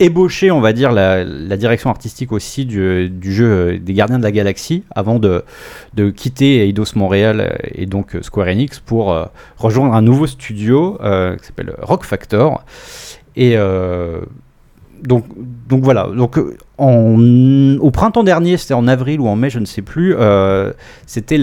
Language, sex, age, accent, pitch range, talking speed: French, male, 30-49, French, 100-130 Hz, 160 wpm